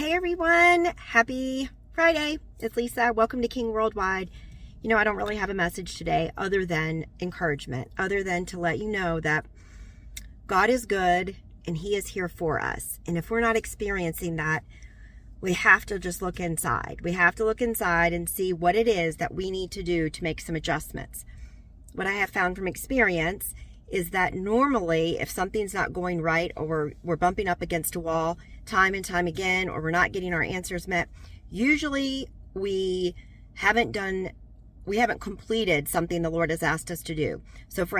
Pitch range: 170-215 Hz